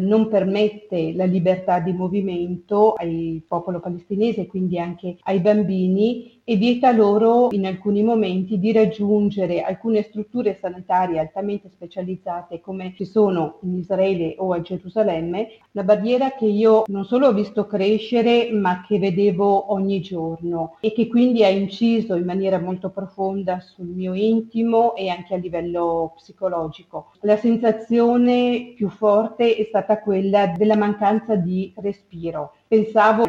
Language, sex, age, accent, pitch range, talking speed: Italian, female, 40-59, native, 185-215 Hz, 140 wpm